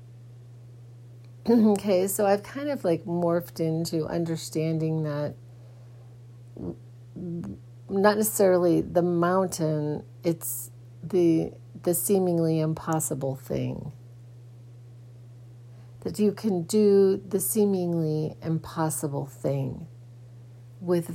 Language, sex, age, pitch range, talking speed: English, female, 50-69, 120-175 Hz, 80 wpm